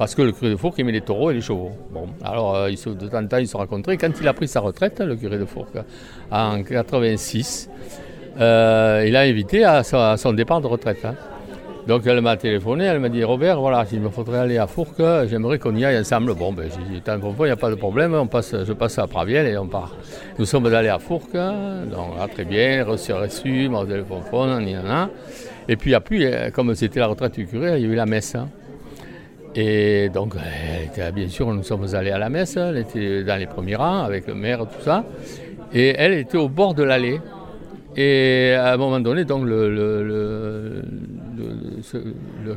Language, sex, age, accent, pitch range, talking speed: French, male, 60-79, French, 105-130 Hz, 230 wpm